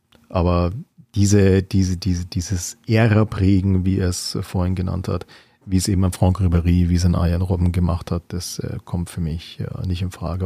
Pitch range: 95-115 Hz